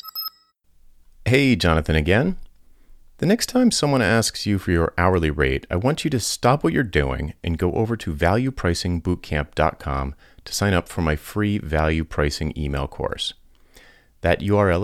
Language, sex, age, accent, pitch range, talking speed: English, male, 30-49, American, 80-115 Hz, 155 wpm